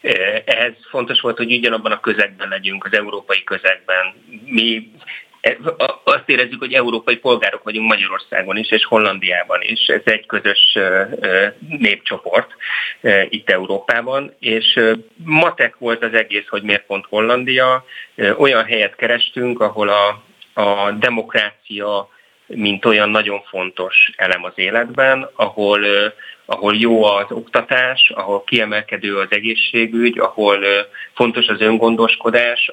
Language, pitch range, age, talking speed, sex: Hungarian, 100-115 Hz, 30-49, 120 wpm, male